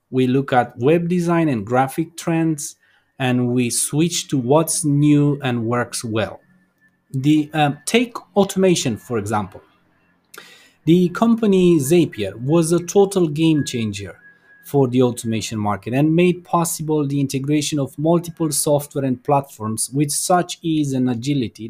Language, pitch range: English, 120-165 Hz